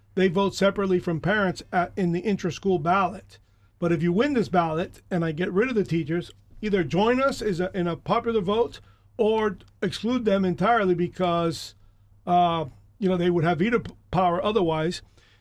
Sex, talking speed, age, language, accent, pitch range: male, 175 wpm, 40-59, English, American, 170-200 Hz